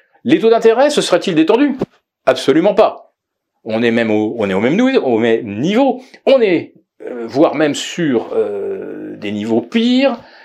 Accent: French